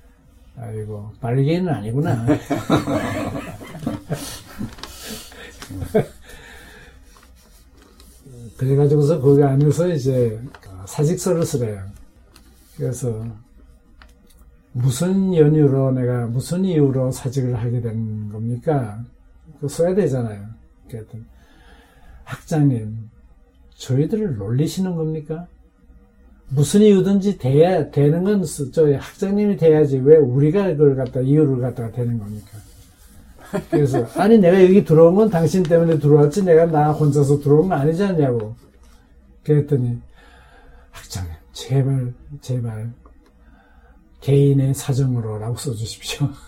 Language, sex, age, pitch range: Korean, male, 60-79, 105-150 Hz